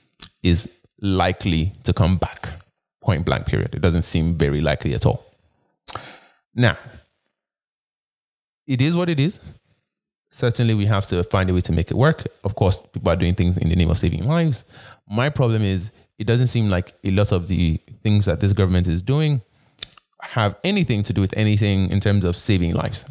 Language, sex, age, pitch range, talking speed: English, male, 20-39, 100-135 Hz, 185 wpm